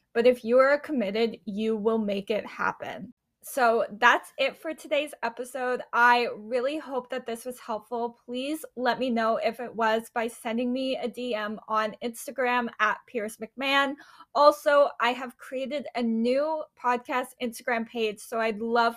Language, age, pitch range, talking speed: English, 10-29, 230-275 Hz, 165 wpm